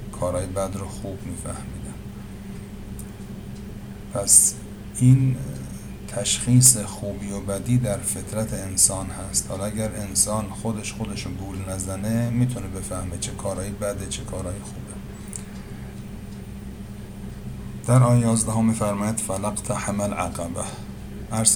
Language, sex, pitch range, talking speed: Persian, male, 100-110 Hz, 110 wpm